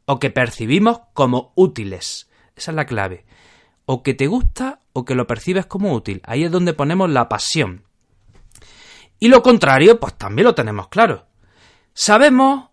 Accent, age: Spanish, 30-49